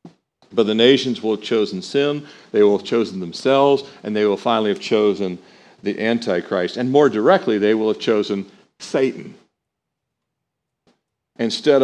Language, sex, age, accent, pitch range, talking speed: English, male, 50-69, American, 105-140 Hz, 145 wpm